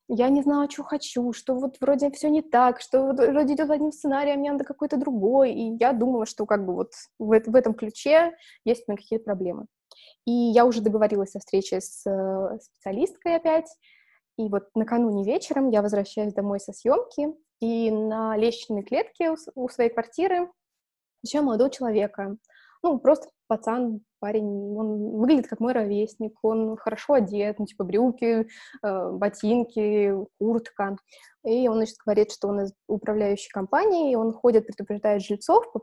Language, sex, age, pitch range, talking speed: Russian, female, 20-39, 205-270 Hz, 160 wpm